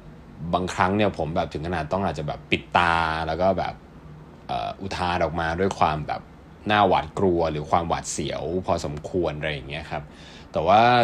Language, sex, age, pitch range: Thai, male, 20-39, 80-105 Hz